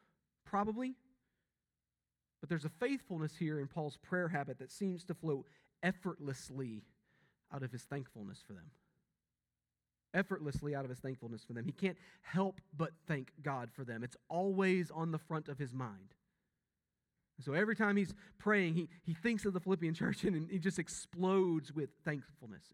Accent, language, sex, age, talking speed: American, English, male, 40-59, 165 wpm